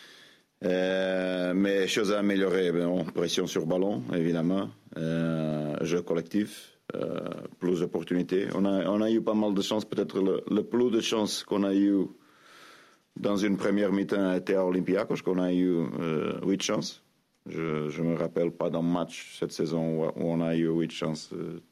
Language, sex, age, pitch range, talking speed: French, male, 40-59, 80-95 Hz, 175 wpm